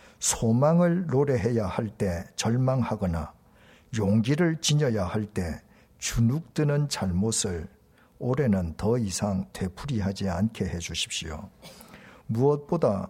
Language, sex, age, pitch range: Korean, male, 50-69, 95-140 Hz